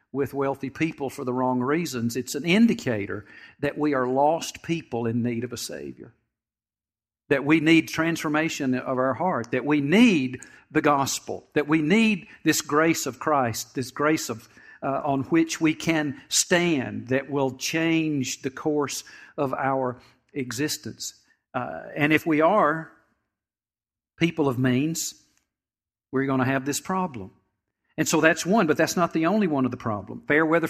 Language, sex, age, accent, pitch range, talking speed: English, male, 50-69, American, 135-170 Hz, 165 wpm